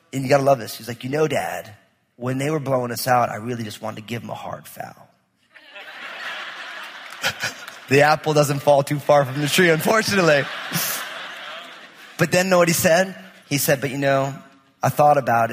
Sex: male